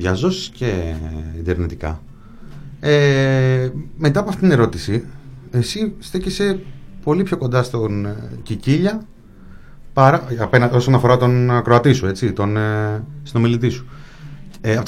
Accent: native